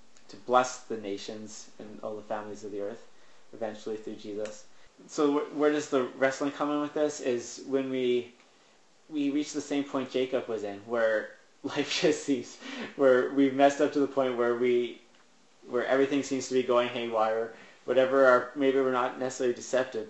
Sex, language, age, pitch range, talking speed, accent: male, English, 20-39, 115-135 Hz, 180 wpm, American